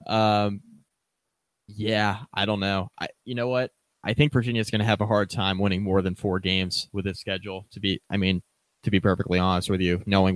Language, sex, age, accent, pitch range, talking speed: English, male, 20-39, American, 95-110 Hz, 210 wpm